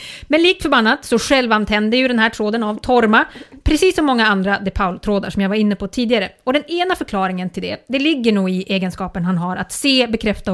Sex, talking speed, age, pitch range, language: female, 215 wpm, 30-49, 195-280 Hz, English